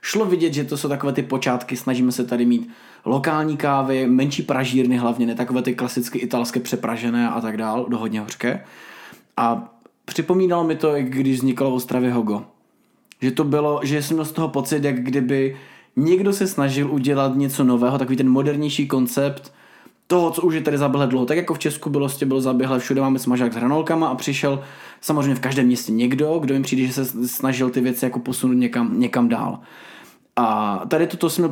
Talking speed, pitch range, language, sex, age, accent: 190 wpm, 130-150 Hz, Czech, male, 20-39, native